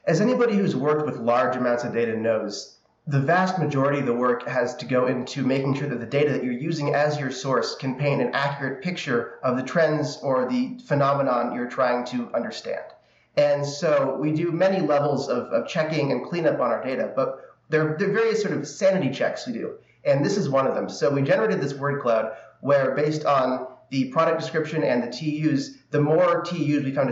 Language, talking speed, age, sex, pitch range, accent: English, 215 wpm, 30-49, male, 135-165 Hz, American